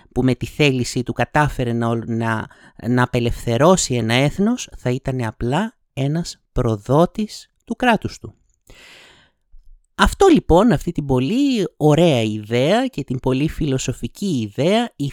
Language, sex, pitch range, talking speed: Greek, male, 125-190 Hz, 130 wpm